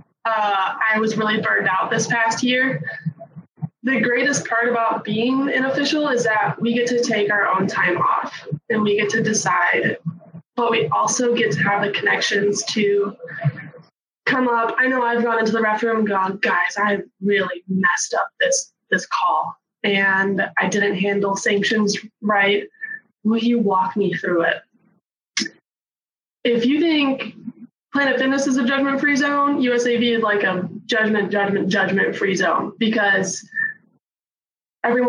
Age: 20-39